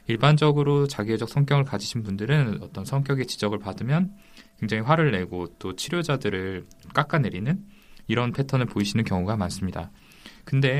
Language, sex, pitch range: Korean, male, 105-145 Hz